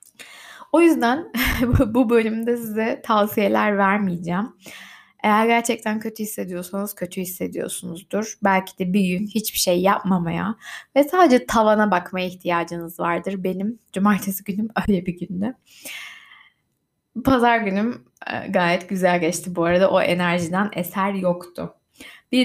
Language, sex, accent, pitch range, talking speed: Turkish, female, native, 185-240 Hz, 120 wpm